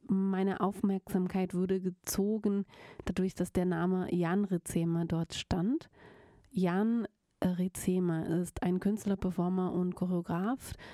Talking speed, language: 110 wpm, German